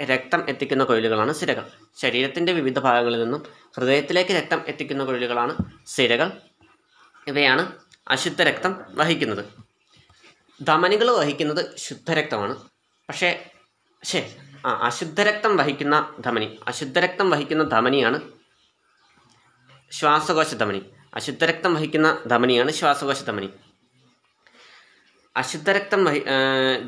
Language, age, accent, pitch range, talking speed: Malayalam, 20-39, native, 125-165 Hz, 80 wpm